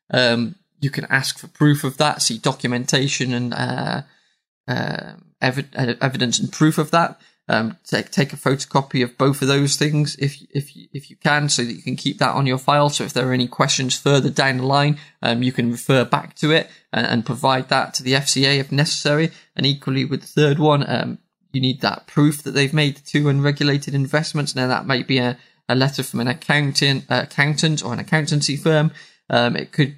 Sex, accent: male, British